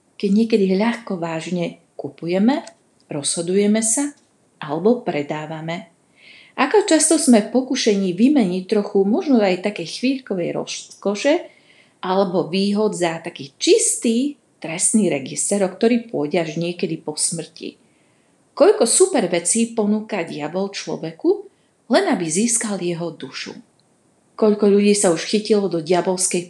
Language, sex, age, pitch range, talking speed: Slovak, female, 40-59, 170-225 Hz, 120 wpm